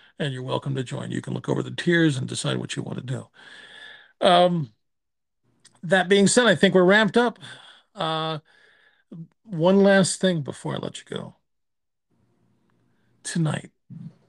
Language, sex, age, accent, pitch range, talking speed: English, male, 50-69, American, 150-205 Hz, 155 wpm